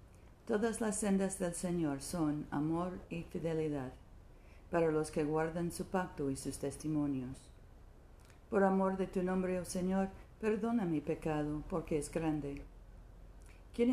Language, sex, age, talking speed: Spanish, female, 50-69, 140 wpm